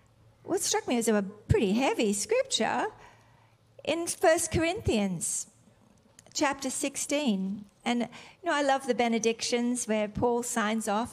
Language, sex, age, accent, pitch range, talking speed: English, female, 40-59, Australian, 215-285 Hz, 130 wpm